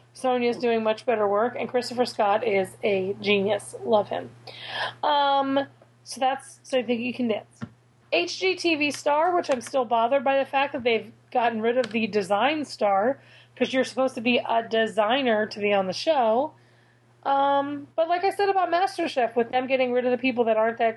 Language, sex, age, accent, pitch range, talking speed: English, female, 30-49, American, 215-270 Hz, 195 wpm